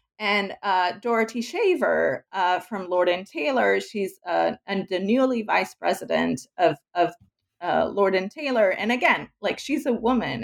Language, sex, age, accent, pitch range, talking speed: English, female, 30-49, American, 200-260 Hz, 160 wpm